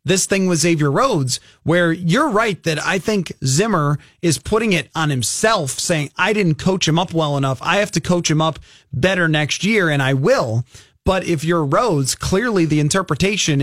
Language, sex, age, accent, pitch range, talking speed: English, male, 30-49, American, 140-185 Hz, 195 wpm